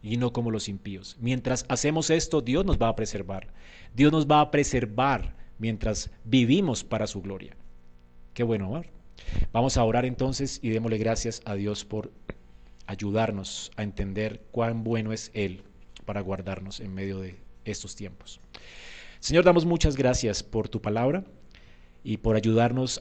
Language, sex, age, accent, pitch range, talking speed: Spanish, male, 30-49, Colombian, 95-125 Hz, 155 wpm